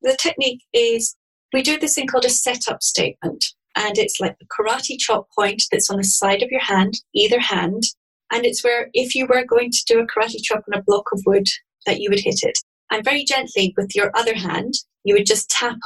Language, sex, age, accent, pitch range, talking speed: English, female, 30-49, British, 200-255 Hz, 225 wpm